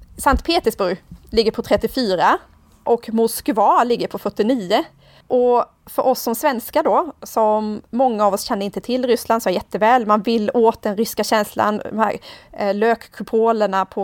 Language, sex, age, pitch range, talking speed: Swedish, female, 30-49, 210-250 Hz, 160 wpm